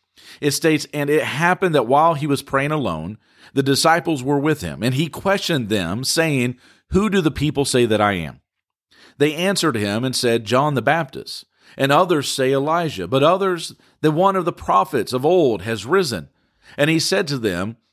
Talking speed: 190 wpm